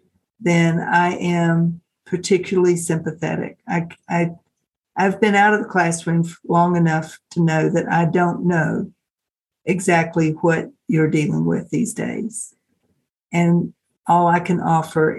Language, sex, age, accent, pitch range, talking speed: English, female, 60-79, American, 165-195 Hz, 125 wpm